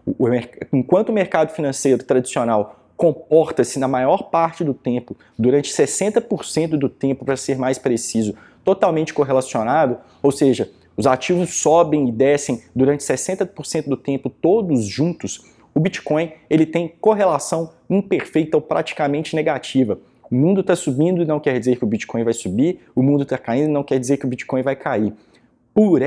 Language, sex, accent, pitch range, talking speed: Portuguese, male, Brazilian, 130-160 Hz, 160 wpm